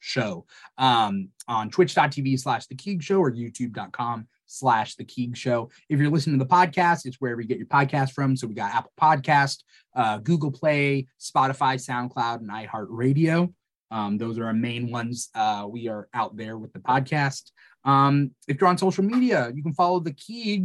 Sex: male